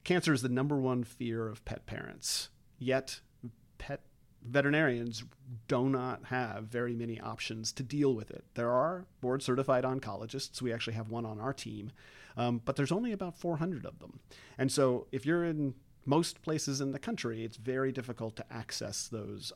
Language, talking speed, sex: English, 180 wpm, male